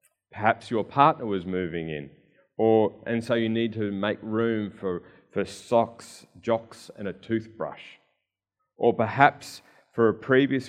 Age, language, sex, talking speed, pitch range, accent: 30-49, English, male, 145 wpm, 95-120 Hz, Australian